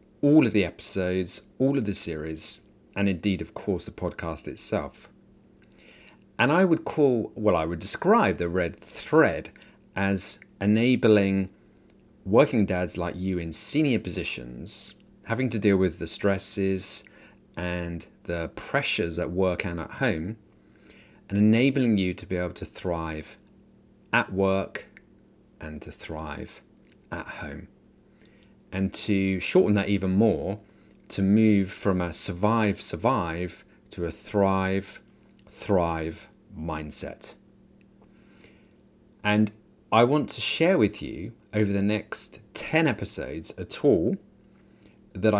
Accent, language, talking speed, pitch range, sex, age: British, English, 125 wpm, 90-105 Hz, male, 30-49